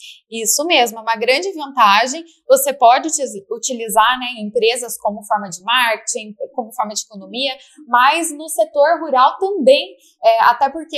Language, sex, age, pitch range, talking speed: Portuguese, female, 10-29, 240-325 Hz, 140 wpm